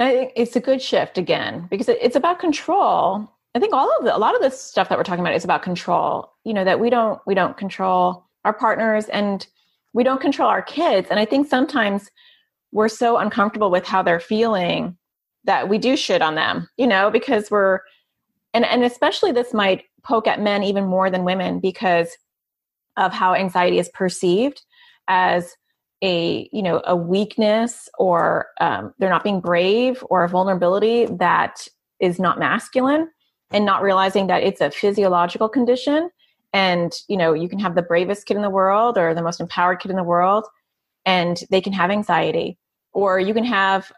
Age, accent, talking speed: 30-49, American, 190 wpm